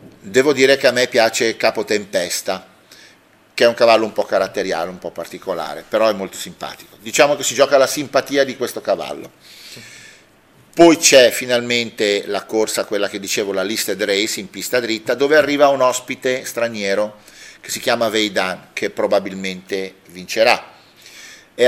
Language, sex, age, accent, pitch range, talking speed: Italian, male, 40-59, native, 105-130 Hz, 160 wpm